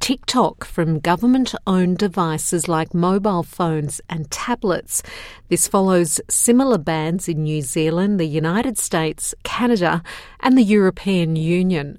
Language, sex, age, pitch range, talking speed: English, female, 50-69, 165-215 Hz, 120 wpm